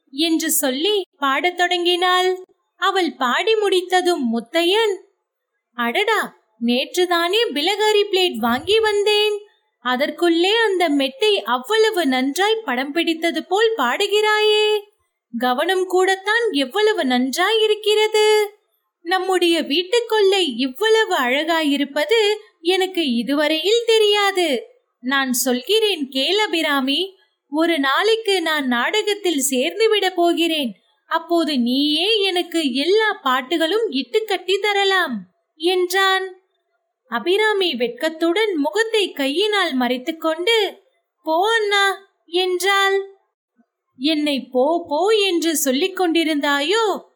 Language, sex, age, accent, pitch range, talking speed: Tamil, female, 20-39, native, 285-410 Hz, 65 wpm